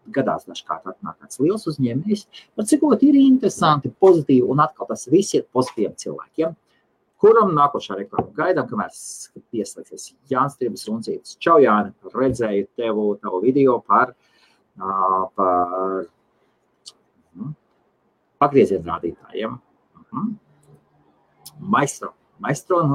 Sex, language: male, English